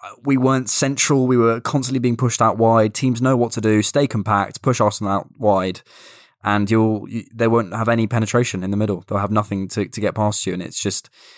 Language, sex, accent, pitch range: English, male, British, 100-115 Hz